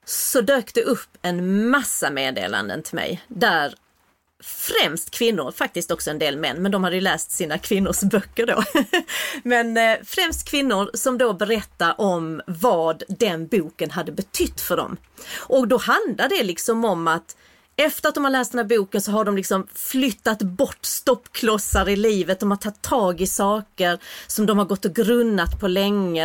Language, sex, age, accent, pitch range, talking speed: Swedish, female, 30-49, native, 185-240 Hz, 180 wpm